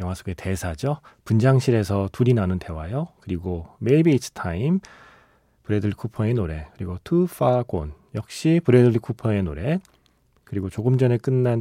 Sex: male